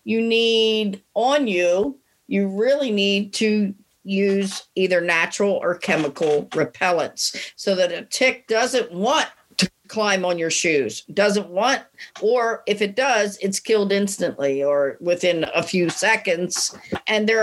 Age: 50-69